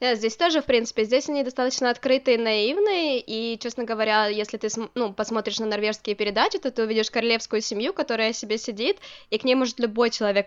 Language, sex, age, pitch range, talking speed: Ukrainian, female, 20-39, 205-250 Hz, 200 wpm